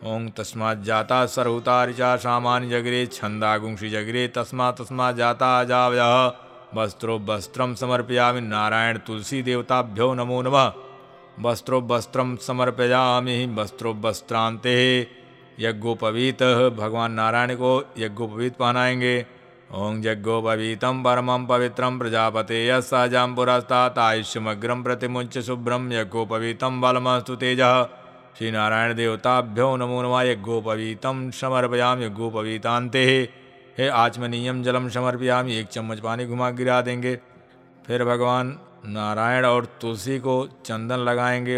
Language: Hindi